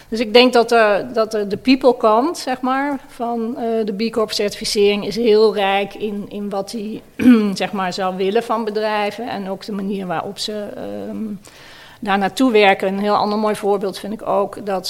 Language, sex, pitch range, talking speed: Dutch, female, 195-220 Hz, 195 wpm